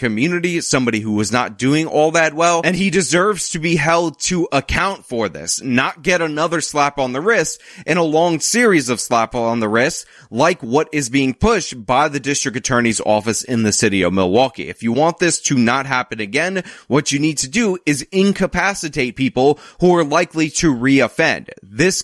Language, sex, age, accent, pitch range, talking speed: English, male, 20-39, American, 115-160 Hz, 195 wpm